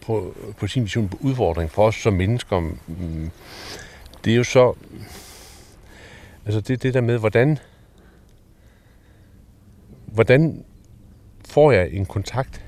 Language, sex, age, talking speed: Danish, male, 60-79, 120 wpm